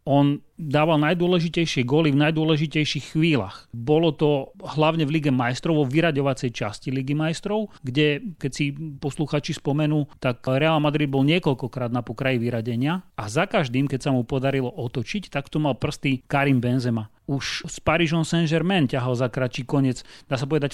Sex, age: male, 30-49